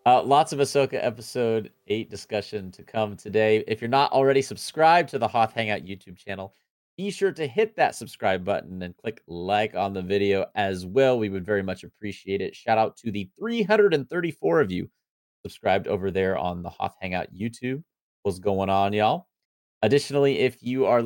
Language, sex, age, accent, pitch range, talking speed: English, male, 30-49, American, 95-135 Hz, 185 wpm